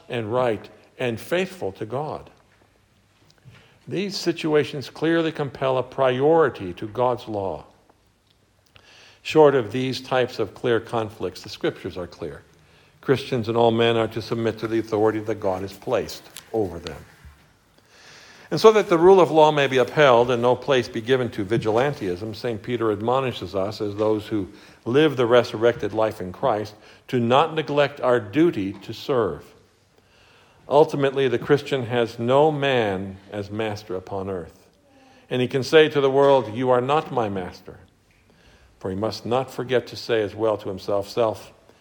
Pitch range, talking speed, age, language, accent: 110-145 Hz, 160 wpm, 60-79, English, American